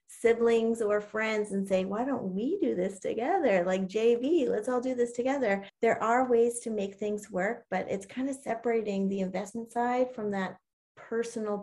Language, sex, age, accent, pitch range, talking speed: English, female, 30-49, American, 185-230 Hz, 185 wpm